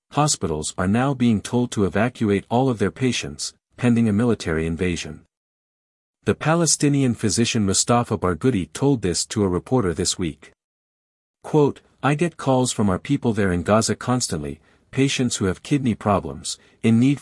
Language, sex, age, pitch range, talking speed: English, male, 50-69, 90-125 Hz, 155 wpm